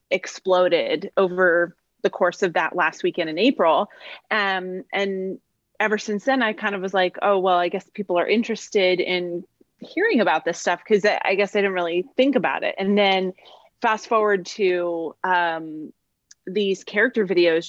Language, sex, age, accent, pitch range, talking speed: English, female, 30-49, American, 175-205 Hz, 170 wpm